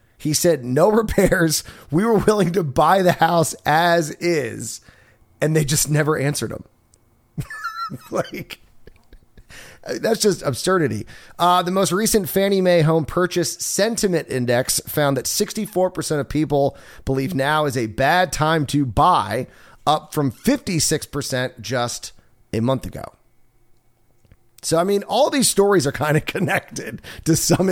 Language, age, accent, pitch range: English, 30-49, American, 125-170 Hz